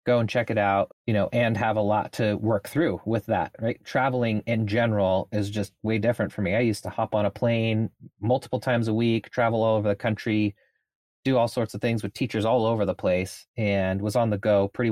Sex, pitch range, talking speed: male, 105-125 Hz, 235 wpm